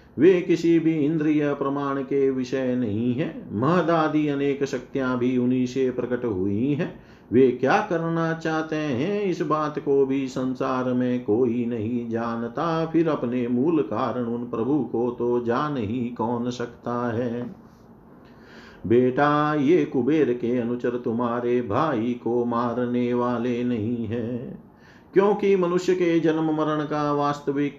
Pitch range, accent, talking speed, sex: 120-145 Hz, native, 140 wpm, male